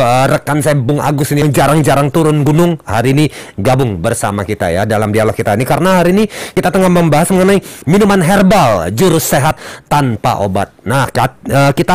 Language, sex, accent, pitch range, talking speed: Indonesian, male, native, 120-160 Hz, 170 wpm